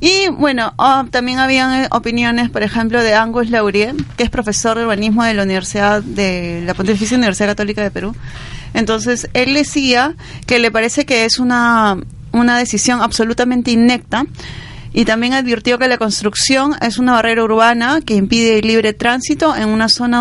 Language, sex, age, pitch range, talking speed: Spanish, female, 30-49, 210-250 Hz, 170 wpm